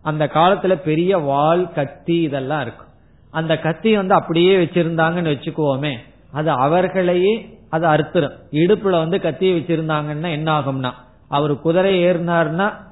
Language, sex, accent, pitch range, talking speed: Tamil, male, native, 140-180 Hz, 120 wpm